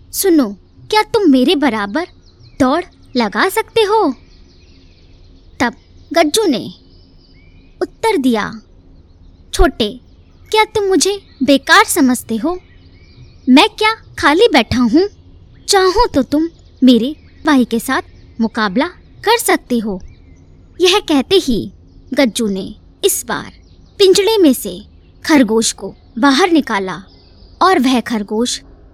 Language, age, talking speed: Hindi, 20-39, 110 wpm